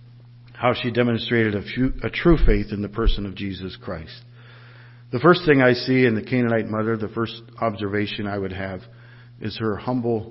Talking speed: 185 wpm